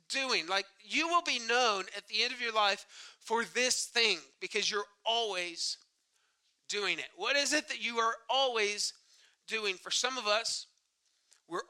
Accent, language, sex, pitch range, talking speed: American, English, male, 205-260 Hz, 170 wpm